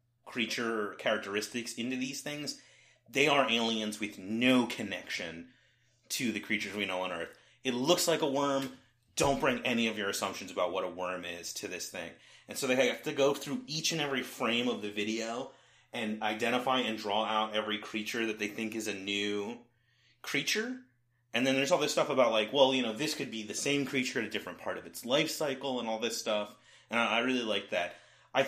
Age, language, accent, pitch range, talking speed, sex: 30-49, English, American, 105-125 Hz, 210 wpm, male